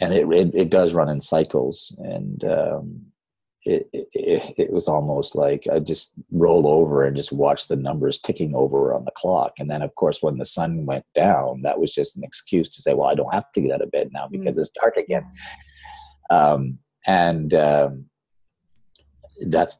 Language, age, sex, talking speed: English, 40-59, male, 195 wpm